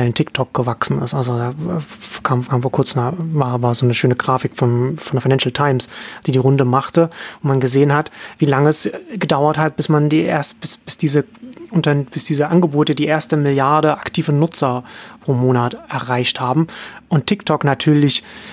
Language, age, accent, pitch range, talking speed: German, 30-49, German, 135-165 Hz, 180 wpm